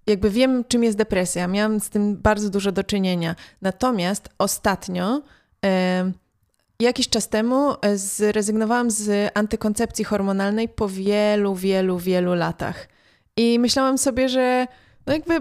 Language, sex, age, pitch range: Polish, female, 20-39, 210-260 Hz